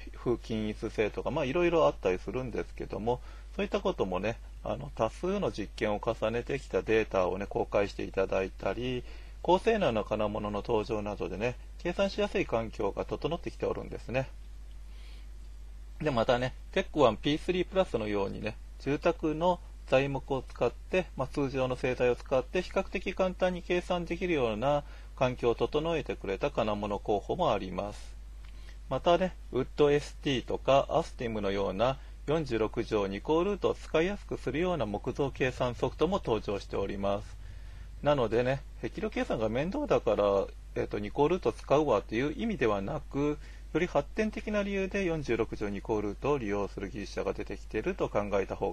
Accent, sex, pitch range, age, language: native, male, 100-160 Hz, 40-59, Japanese